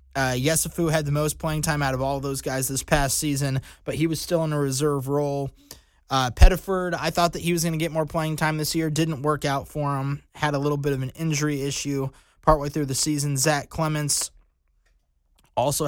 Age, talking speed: 20-39, 215 wpm